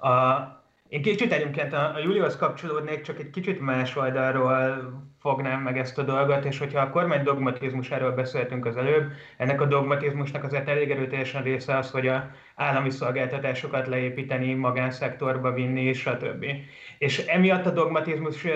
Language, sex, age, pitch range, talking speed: Hungarian, male, 30-49, 125-145 Hz, 155 wpm